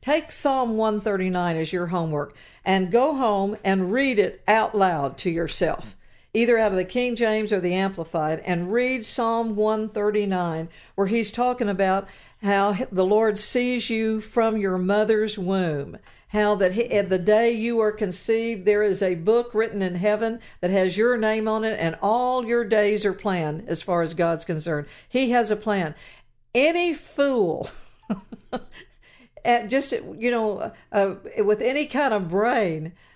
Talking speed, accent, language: 160 wpm, American, English